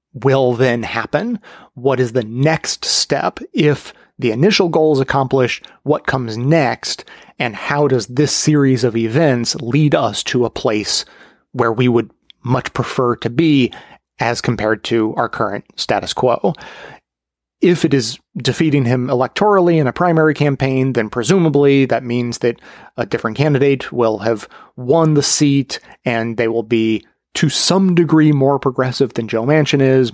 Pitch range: 115-140 Hz